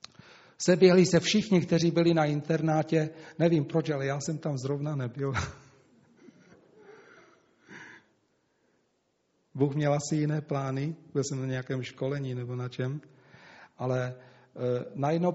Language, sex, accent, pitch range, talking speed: Czech, male, native, 140-175 Hz, 115 wpm